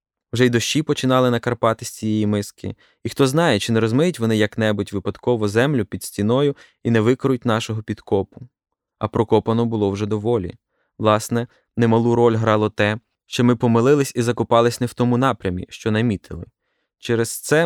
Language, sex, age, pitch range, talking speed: Ukrainian, male, 20-39, 105-125 Hz, 170 wpm